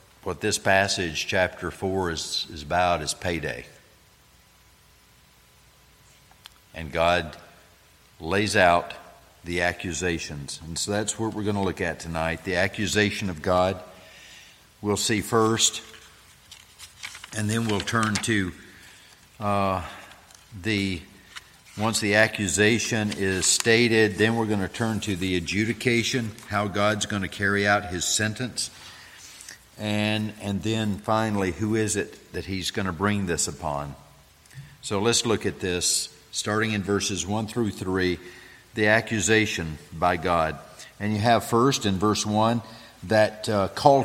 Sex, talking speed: male, 135 wpm